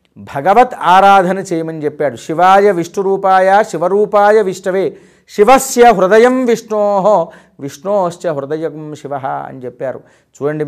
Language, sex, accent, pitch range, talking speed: Telugu, male, native, 160-210 Hz, 95 wpm